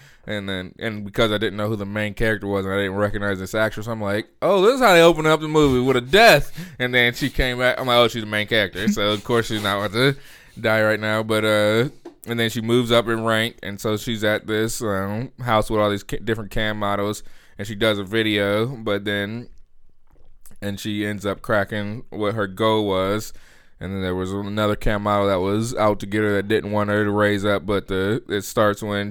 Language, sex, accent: English, male, American